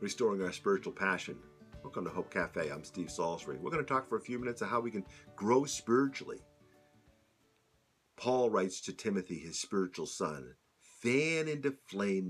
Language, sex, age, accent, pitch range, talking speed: English, male, 50-69, American, 90-130 Hz, 170 wpm